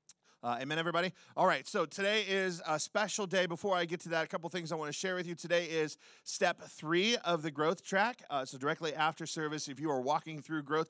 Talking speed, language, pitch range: 240 wpm, English, 145-180 Hz